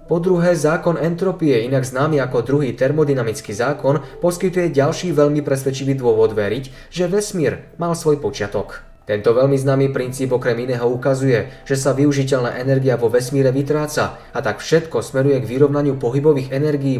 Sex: male